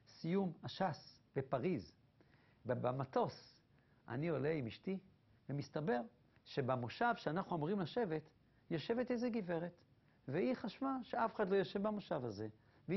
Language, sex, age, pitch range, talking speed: Hebrew, male, 60-79, 125-205 Hz, 115 wpm